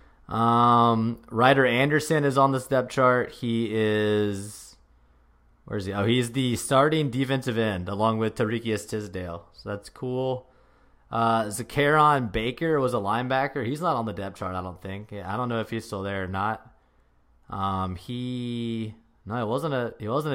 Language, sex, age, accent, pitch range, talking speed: English, male, 20-39, American, 115-135 Hz, 170 wpm